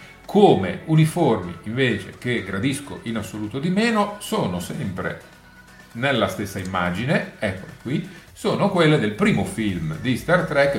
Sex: male